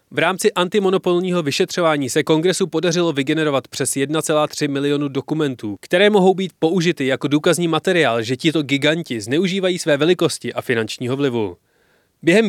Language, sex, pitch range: Czech, male, 130-175 Hz